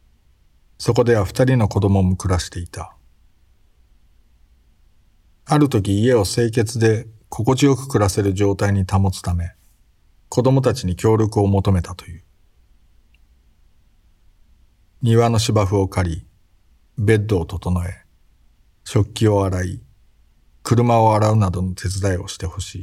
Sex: male